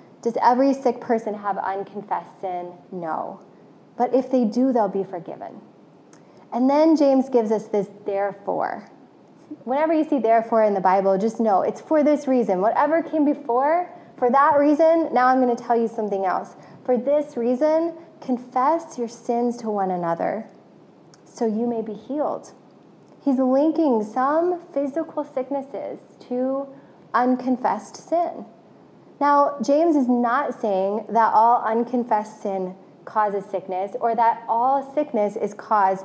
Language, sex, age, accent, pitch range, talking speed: English, female, 20-39, American, 205-280 Hz, 145 wpm